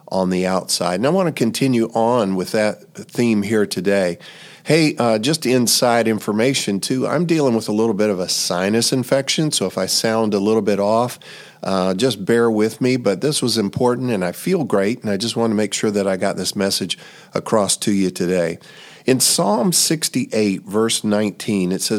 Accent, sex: American, male